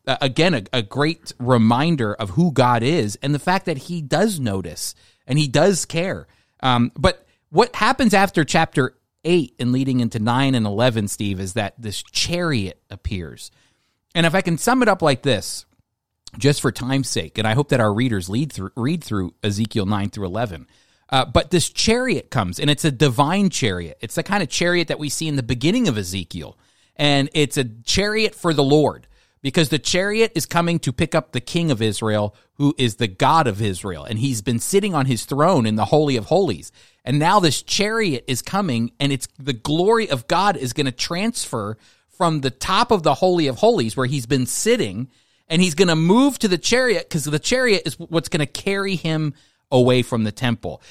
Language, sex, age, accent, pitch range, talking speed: English, male, 30-49, American, 115-170 Hz, 205 wpm